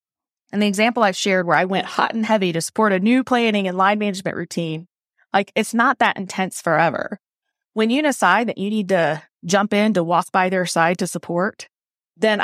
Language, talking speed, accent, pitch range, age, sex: English, 205 wpm, American, 180-235 Hz, 20-39, female